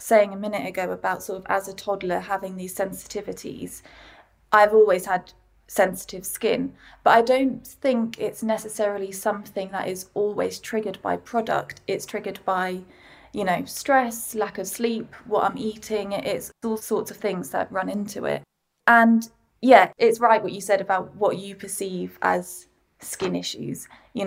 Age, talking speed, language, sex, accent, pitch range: 20-39, 165 wpm, English, female, British, 195-225 Hz